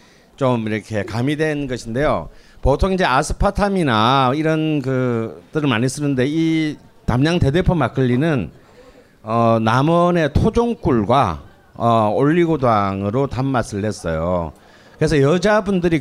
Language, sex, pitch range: Korean, male, 120-180 Hz